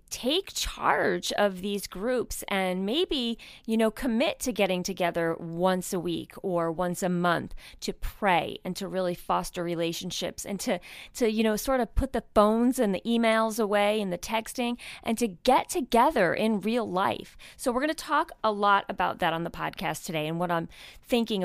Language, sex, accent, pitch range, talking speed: English, female, American, 185-255 Hz, 190 wpm